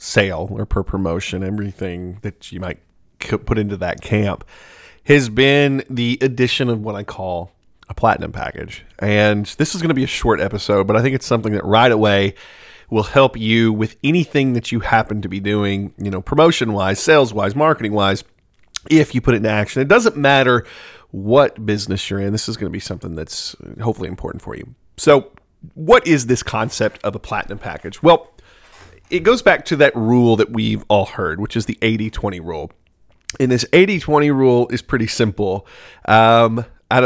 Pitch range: 100-130 Hz